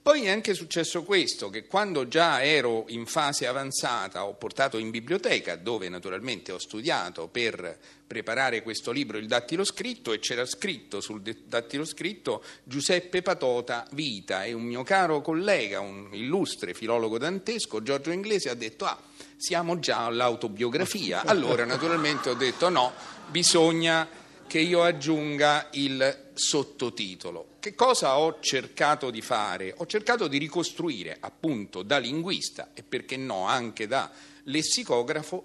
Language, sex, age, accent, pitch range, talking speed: Italian, male, 40-59, native, 120-175 Hz, 140 wpm